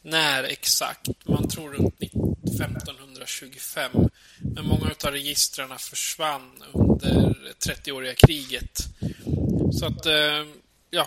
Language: Swedish